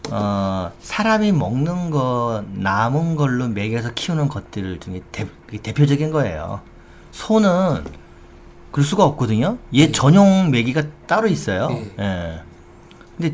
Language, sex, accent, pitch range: Korean, male, native, 105-155 Hz